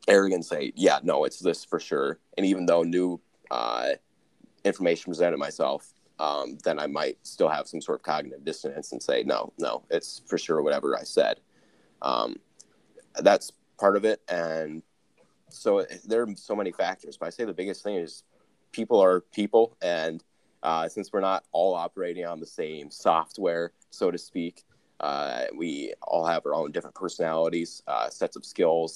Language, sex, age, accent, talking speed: English, male, 30-49, American, 175 wpm